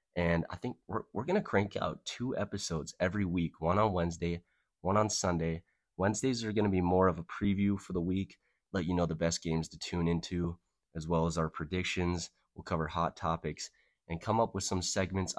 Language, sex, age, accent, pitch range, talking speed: English, male, 20-39, American, 85-95 Hz, 215 wpm